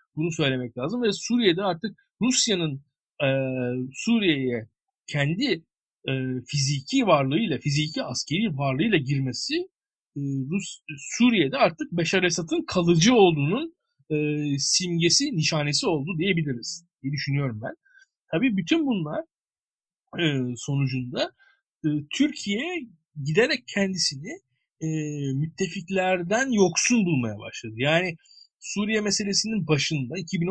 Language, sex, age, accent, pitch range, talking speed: Turkish, male, 50-69, native, 145-200 Hz, 100 wpm